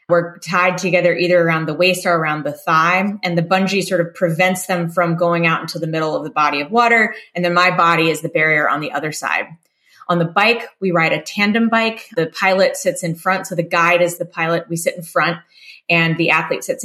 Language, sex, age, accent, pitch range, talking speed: English, female, 20-39, American, 170-200 Hz, 240 wpm